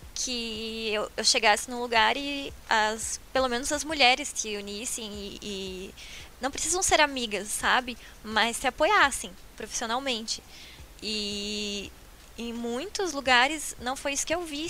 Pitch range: 215-265 Hz